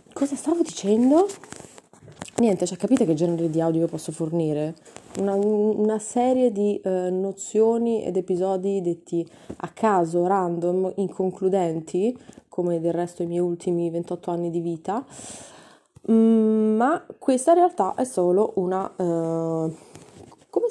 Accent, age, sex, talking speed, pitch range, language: native, 20-39, female, 135 wpm, 170-215 Hz, Italian